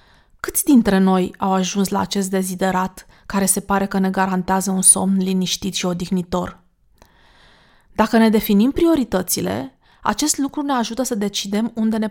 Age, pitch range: 30-49, 195-240 Hz